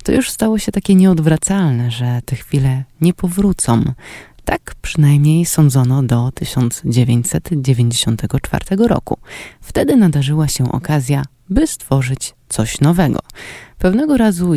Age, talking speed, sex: 20-39, 110 wpm, female